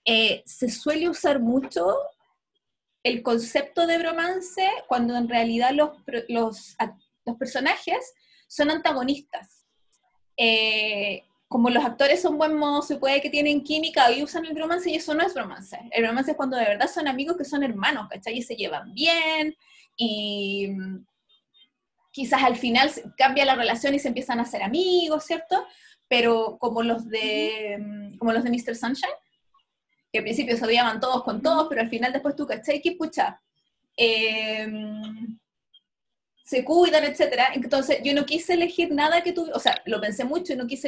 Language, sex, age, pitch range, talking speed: Spanish, female, 20-39, 235-315 Hz, 165 wpm